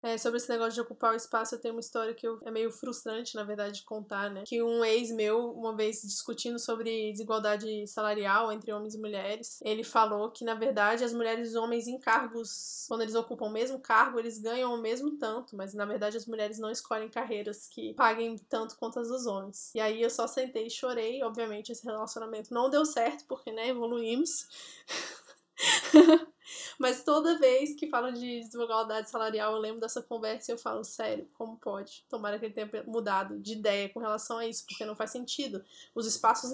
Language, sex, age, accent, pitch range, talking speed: Portuguese, female, 10-29, Brazilian, 220-245 Hz, 200 wpm